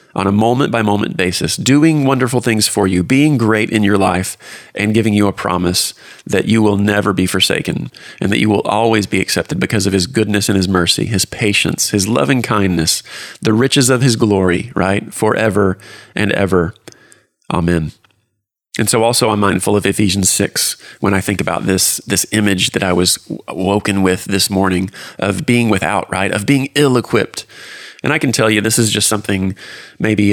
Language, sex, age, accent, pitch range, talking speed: English, male, 30-49, American, 95-115 Hz, 190 wpm